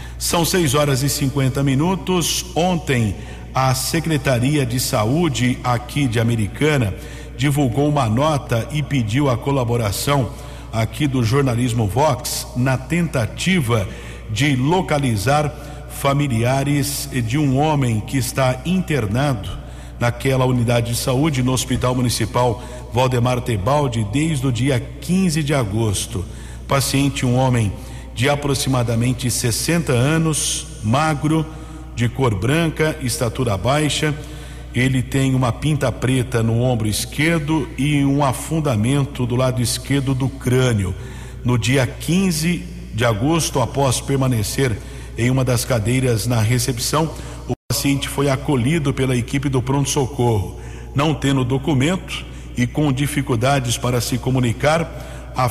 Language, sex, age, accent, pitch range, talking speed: Portuguese, male, 50-69, Brazilian, 120-145 Hz, 120 wpm